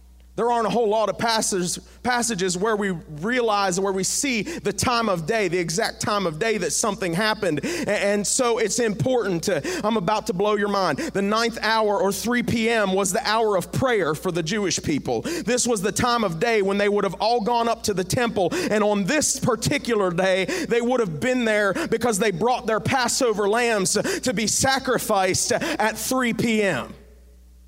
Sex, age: male, 30-49